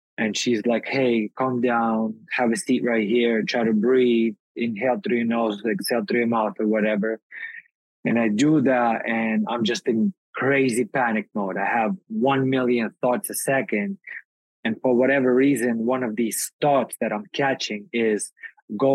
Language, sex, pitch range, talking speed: English, male, 110-130 Hz, 175 wpm